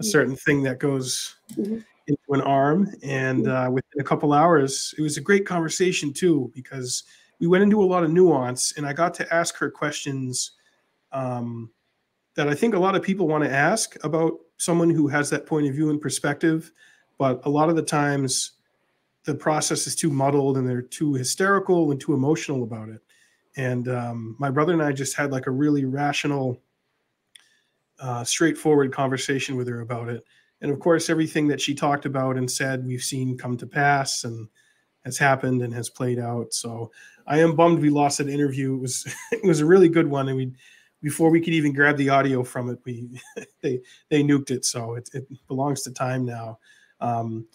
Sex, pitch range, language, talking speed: male, 130-155 Hz, English, 200 wpm